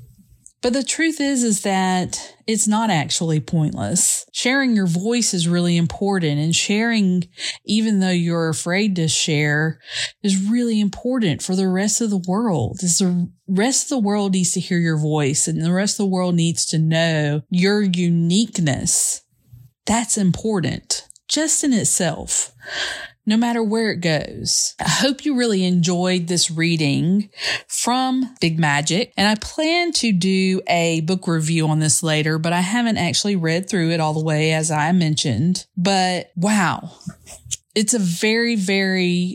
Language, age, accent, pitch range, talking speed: English, 40-59, American, 165-210 Hz, 160 wpm